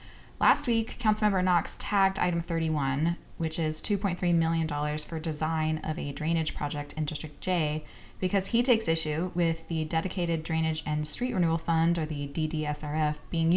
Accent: American